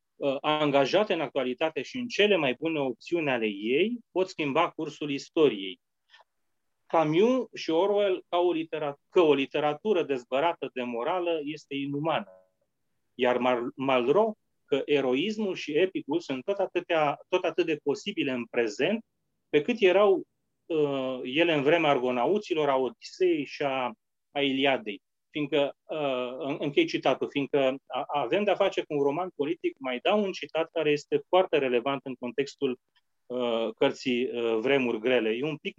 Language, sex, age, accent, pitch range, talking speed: English, male, 30-49, Romanian, 130-170 Hz, 150 wpm